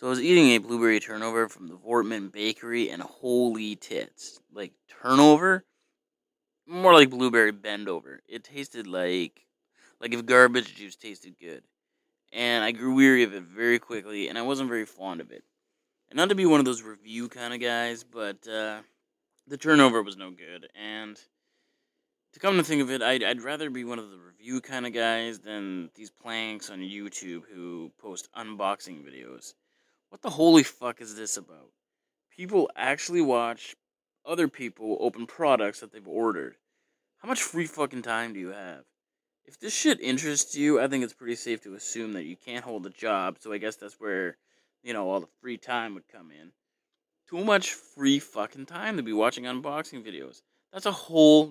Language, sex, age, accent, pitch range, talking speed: English, male, 20-39, American, 110-145 Hz, 185 wpm